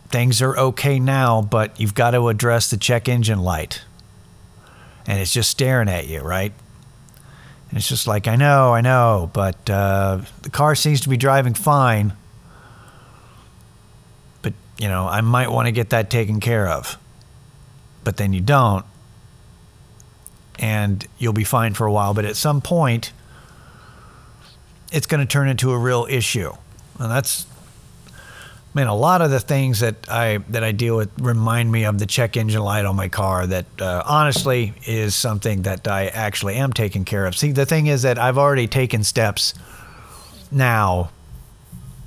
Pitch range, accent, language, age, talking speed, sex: 105-135 Hz, American, English, 50-69, 170 wpm, male